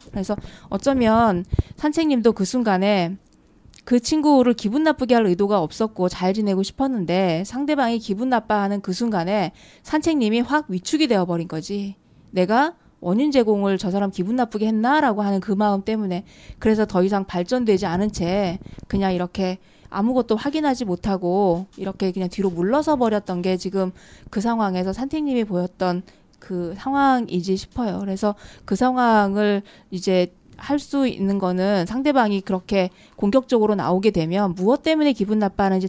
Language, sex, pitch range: Korean, female, 190-235 Hz